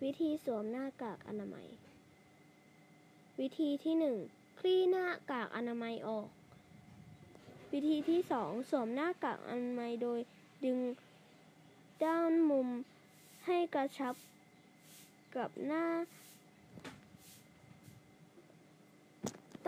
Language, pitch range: Thai, 235-300 Hz